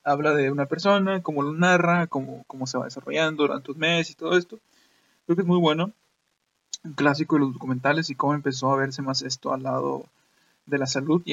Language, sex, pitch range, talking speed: Spanish, male, 130-145 Hz, 215 wpm